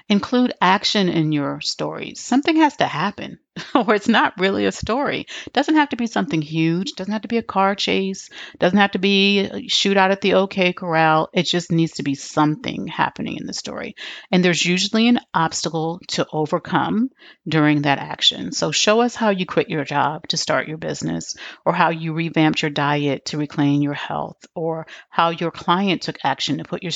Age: 40-59